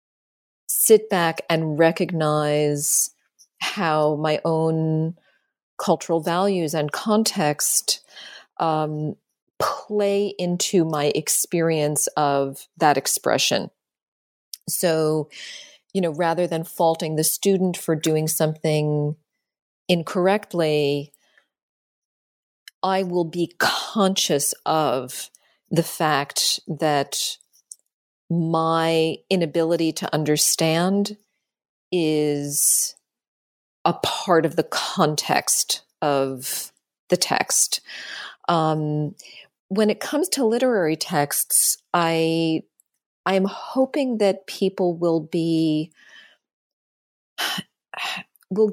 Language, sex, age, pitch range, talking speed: English, female, 40-59, 155-190 Hz, 85 wpm